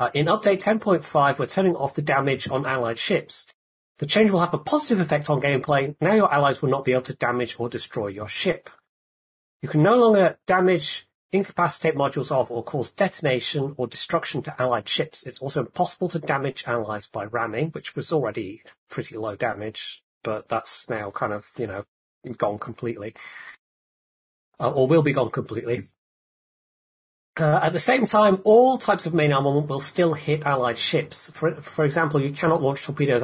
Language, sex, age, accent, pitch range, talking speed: English, male, 30-49, British, 125-165 Hz, 180 wpm